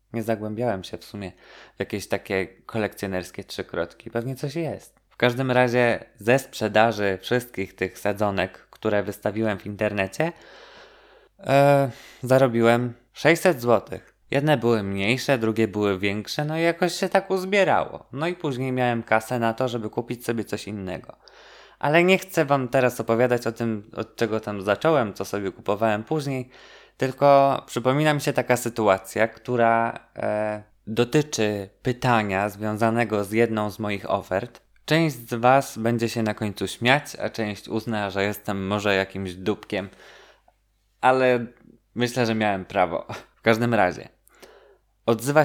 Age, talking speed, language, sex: 20-39, 145 wpm, Polish, male